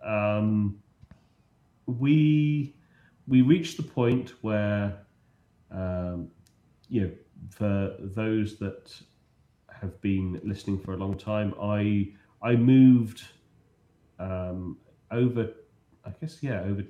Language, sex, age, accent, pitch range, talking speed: English, male, 30-49, British, 90-115 Hz, 105 wpm